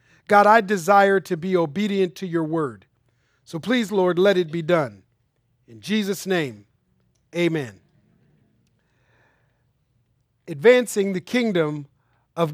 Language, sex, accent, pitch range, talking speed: English, male, American, 155-215 Hz, 115 wpm